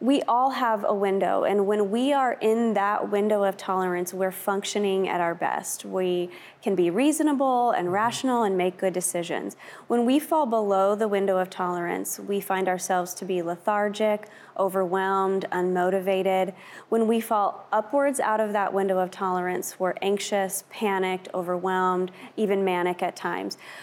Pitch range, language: 185-220 Hz, English